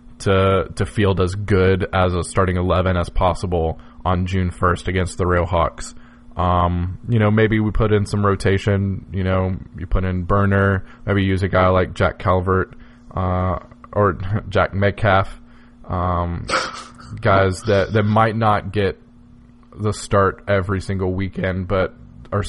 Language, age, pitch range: English, 20-39, 90-105 Hz